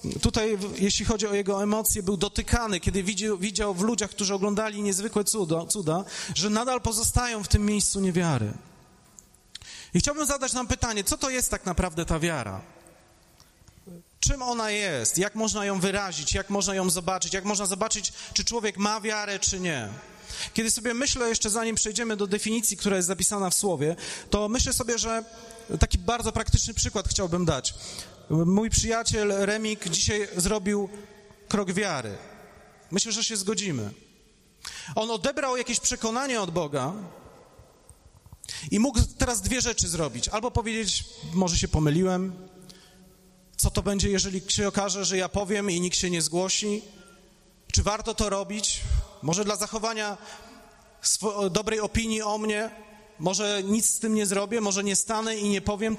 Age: 30-49